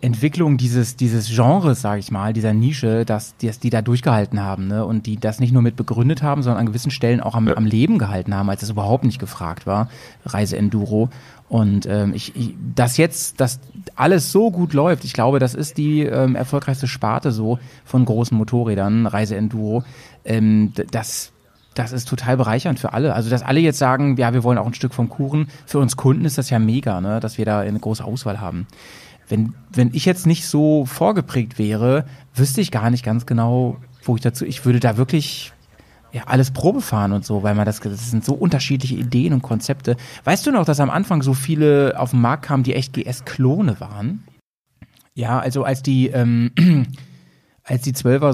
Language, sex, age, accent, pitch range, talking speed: German, male, 30-49, German, 115-135 Hz, 200 wpm